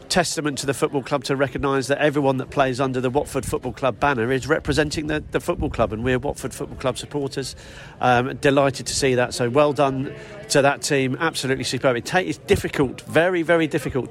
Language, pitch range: English, 130-160 Hz